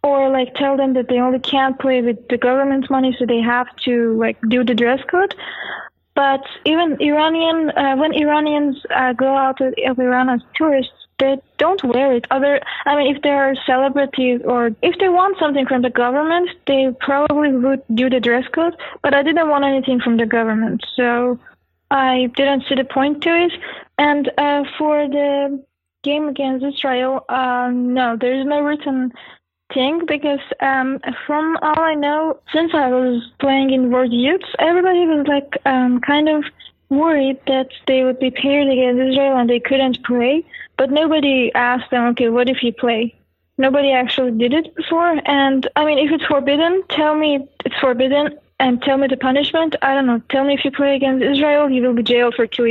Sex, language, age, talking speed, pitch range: female, English, 20-39, 190 wpm, 255-295 Hz